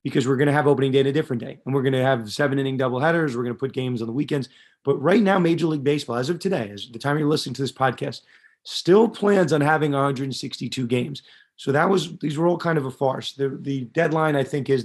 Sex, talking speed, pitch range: male, 275 wpm, 130-155 Hz